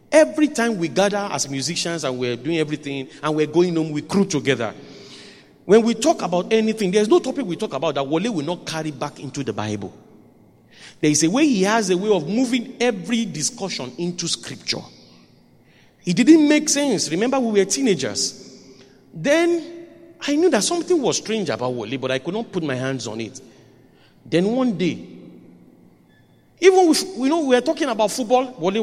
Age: 40-59